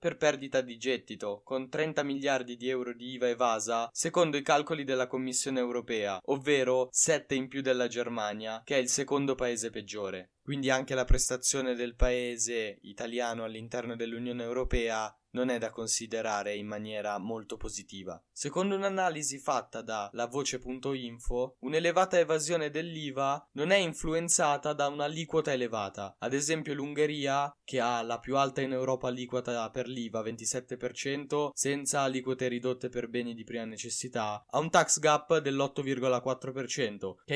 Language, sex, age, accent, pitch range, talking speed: Italian, male, 10-29, native, 120-145 Hz, 145 wpm